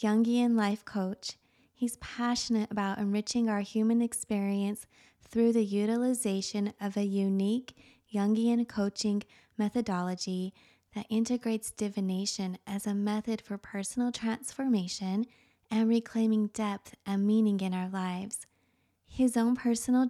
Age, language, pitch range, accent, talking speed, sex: 20-39, English, 195-230 Hz, American, 115 wpm, female